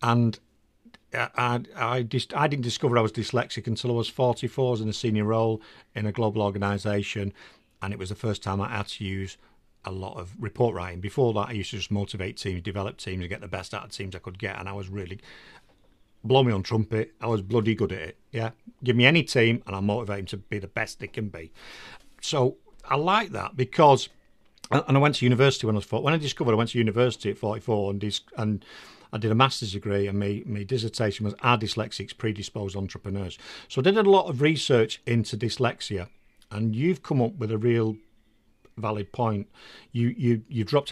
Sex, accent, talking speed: male, British, 225 wpm